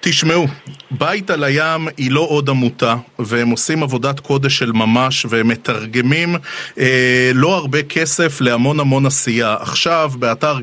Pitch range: 130-170 Hz